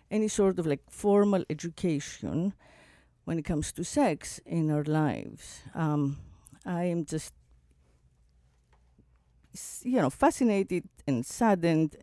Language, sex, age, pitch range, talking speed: English, female, 50-69, 130-170 Hz, 115 wpm